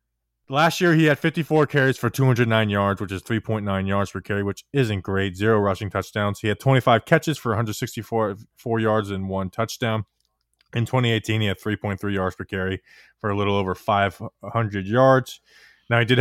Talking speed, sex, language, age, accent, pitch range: 180 wpm, male, English, 20-39, American, 100-135 Hz